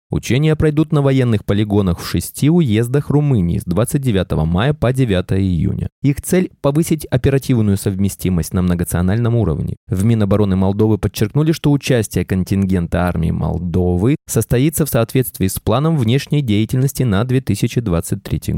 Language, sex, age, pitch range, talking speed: Russian, male, 20-39, 95-140 Hz, 130 wpm